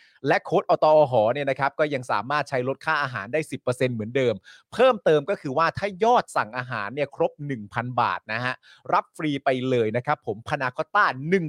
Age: 30-49